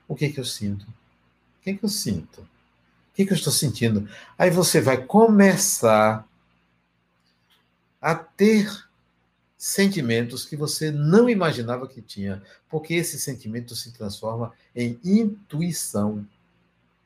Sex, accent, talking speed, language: male, Brazilian, 125 wpm, Portuguese